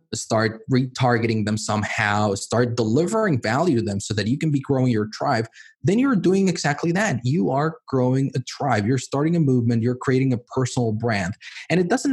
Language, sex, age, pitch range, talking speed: English, male, 20-39, 115-165 Hz, 195 wpm